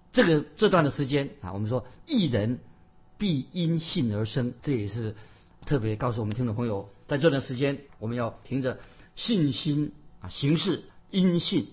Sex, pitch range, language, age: male, 110-145 Hz, Chinese, 50-69